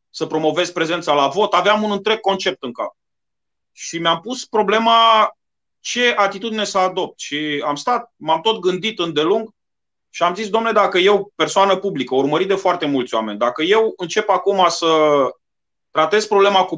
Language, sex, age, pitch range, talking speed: Romanian, male, 30-49, 170-220 Hz, 170 wpm